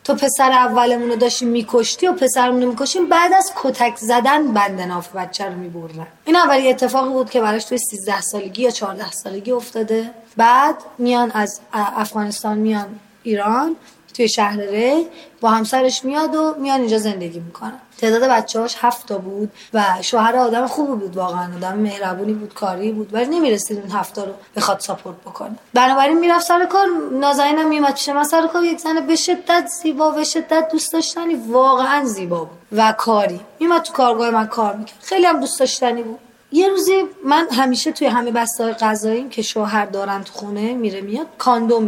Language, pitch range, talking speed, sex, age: Persian, 215-295 Hz, 180 wpm, female, 20-39